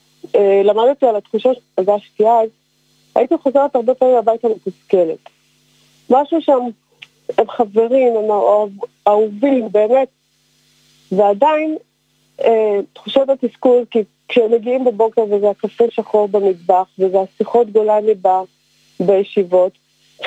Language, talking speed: Hebrew, 100 wpm